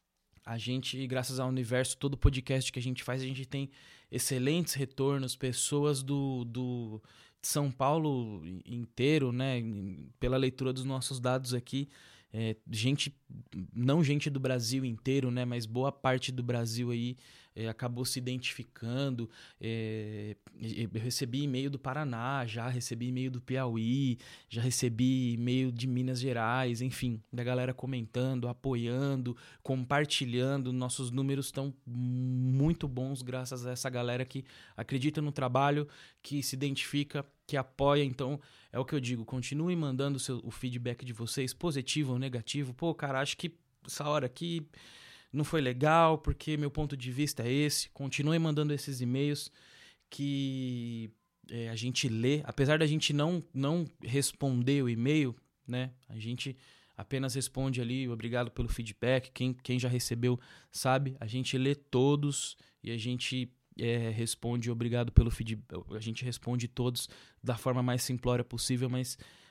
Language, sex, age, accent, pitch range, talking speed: Portuguese, male, 20-39, Brazilian, 120-140 Hz, 145 wpm